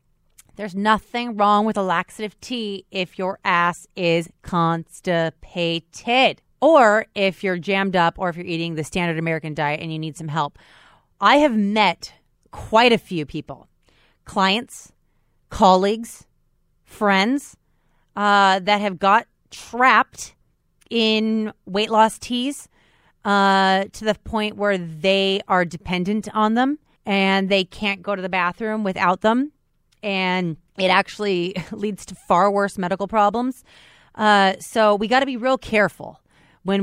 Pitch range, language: 180-220 Hz, English